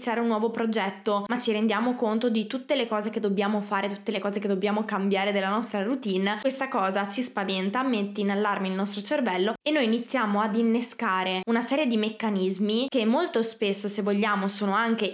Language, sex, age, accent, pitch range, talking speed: Italian, female, 20-39, native, 195-235 Hz, 195 wpm